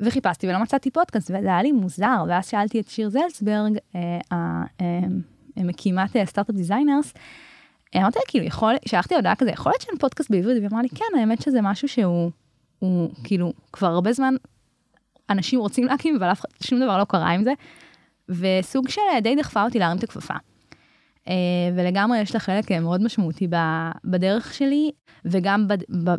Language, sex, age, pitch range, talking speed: Hebrew, female, 20-39, 185-250 Hz, 165 wpm